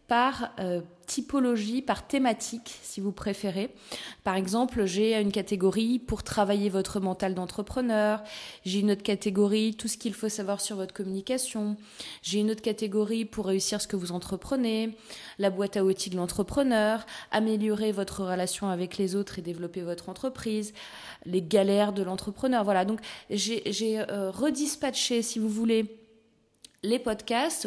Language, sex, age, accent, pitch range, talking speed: French, female, 20-39, French, 195-235 Hz, 155 wpm